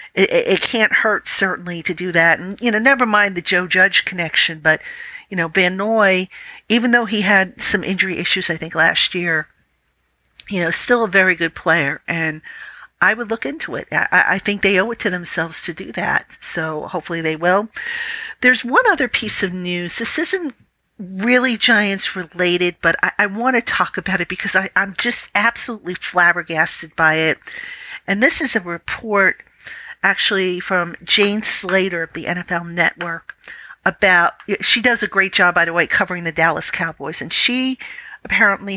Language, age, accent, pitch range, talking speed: English, 50-69, American, 175-225 Hz, 180 wpm